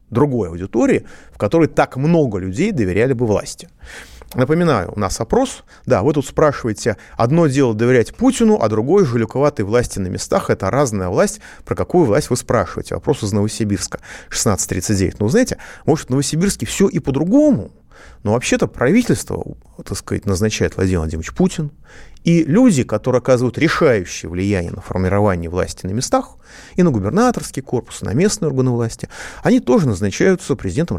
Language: Russian